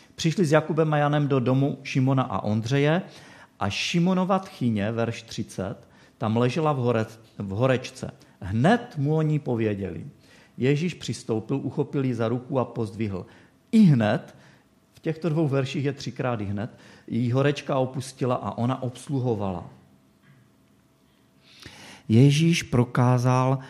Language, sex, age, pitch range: Czech, male, 40-59, 105-140 Hz